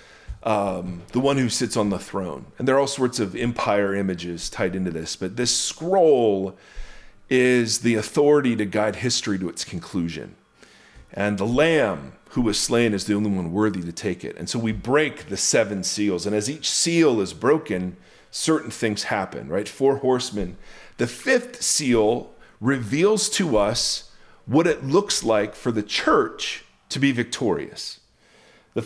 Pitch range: 105-140 Hz